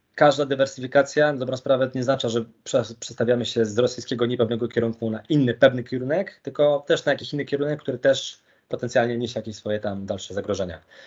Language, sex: Polish, male